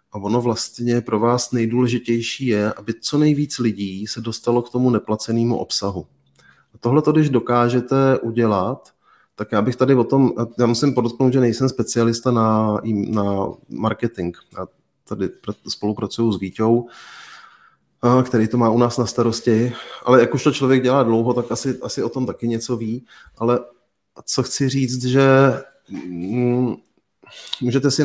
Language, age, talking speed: Czech, 30-49, 150 wpm